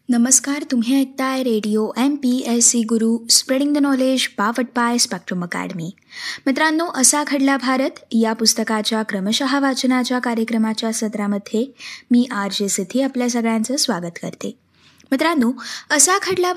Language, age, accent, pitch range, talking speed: Marathi, 20-39, native, 225-290 Hz, 125 wpm